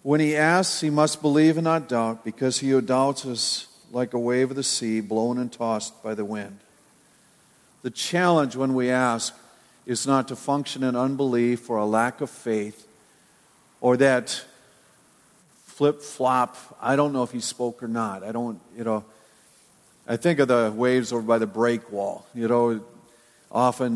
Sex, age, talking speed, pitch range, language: male, 50-69, 175 wpm, 115-135 Hz, English